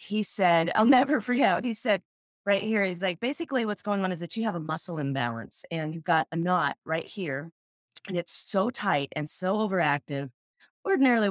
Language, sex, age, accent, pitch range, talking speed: English, female, 30-49, American, 160-270 Hz, 200 wpm